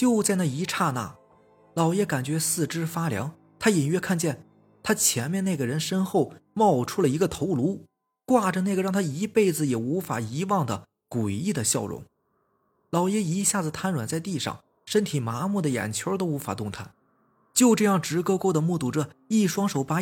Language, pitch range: Chinese, 125-190 Hz